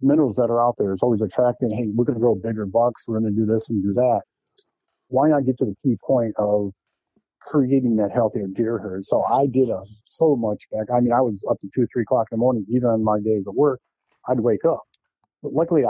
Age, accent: 50-69, American